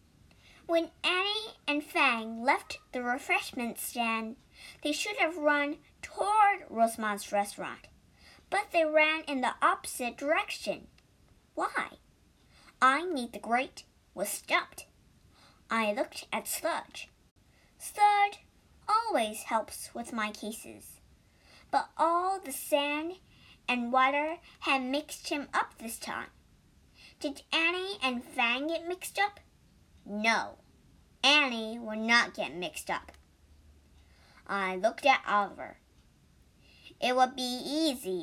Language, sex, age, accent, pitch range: Chinese, male, 50-69, American, 225-325 Hz